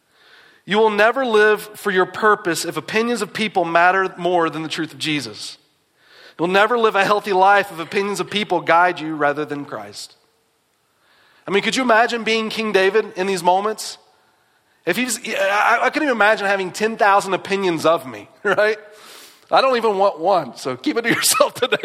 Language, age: English, 30-49